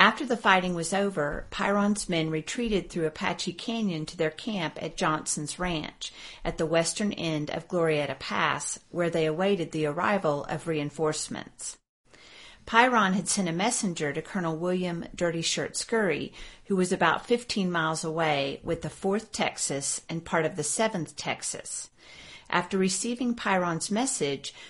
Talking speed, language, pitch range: 150 wpm, English, 155-195 Hz